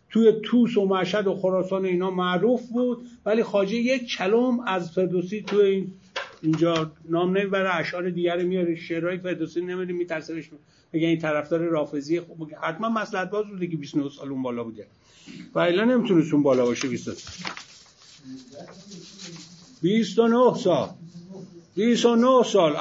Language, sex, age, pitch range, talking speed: Persian, male, 50-69, 175-225 Hz, 140 wpm